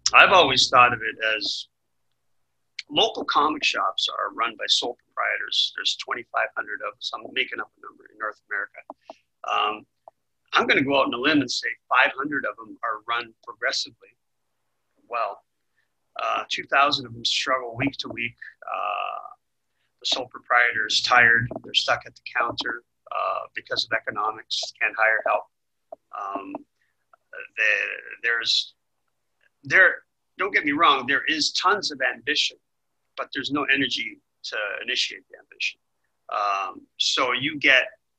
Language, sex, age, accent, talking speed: English, male, 40-59, American, 150 wpm